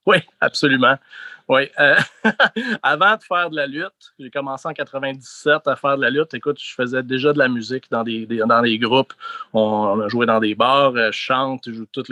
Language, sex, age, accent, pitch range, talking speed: French, male, 30-49, Canadian, 120-150 Hz, 215 wpm